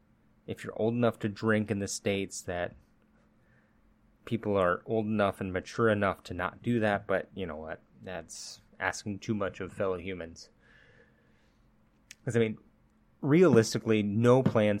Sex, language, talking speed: male, English, 155 wpm